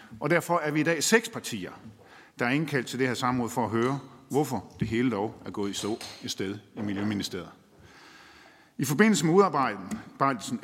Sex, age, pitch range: male, 50-69, 120-175 Hz